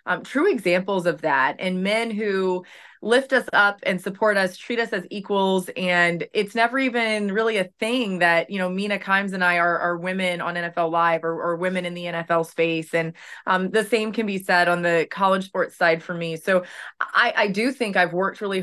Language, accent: English, American